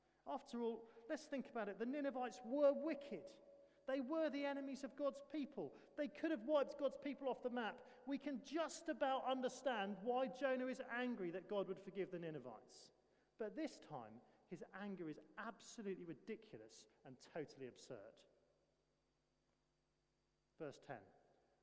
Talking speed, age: 150 wpm, 40-59